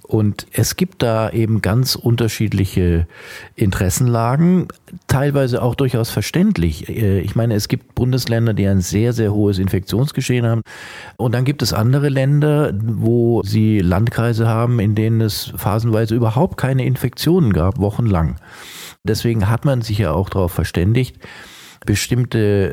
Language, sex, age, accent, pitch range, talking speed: German, male, 50-69, German, 100-125 Hz, 135 wpm